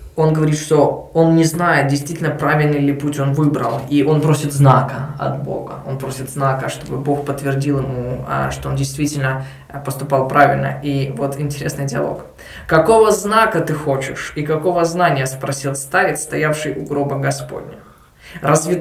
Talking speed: 155 wpm